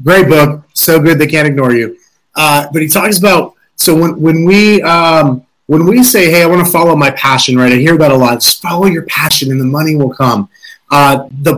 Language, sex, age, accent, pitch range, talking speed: English, male, 30-49, American, 140-175 Hz, 235 wpm